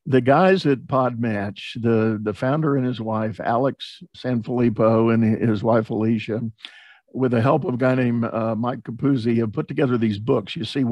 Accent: American